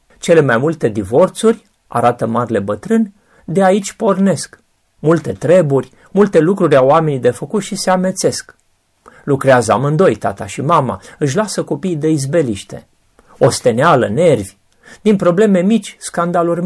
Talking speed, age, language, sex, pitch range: 135 wpm, 40-59, Romanian, male, 130-190 Hz